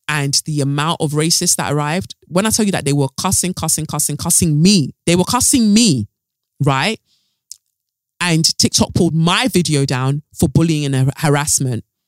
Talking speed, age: 170 wpm, 20-39